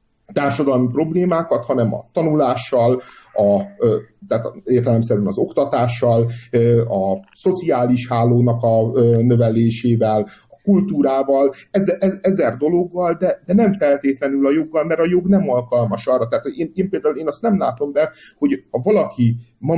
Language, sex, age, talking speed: Hungarian, male, 50-69, 140 wpm